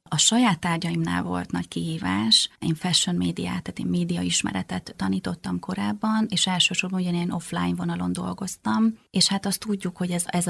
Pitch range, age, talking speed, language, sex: 145-185 Hz, 30-49, 160 wpm, Hungarian, female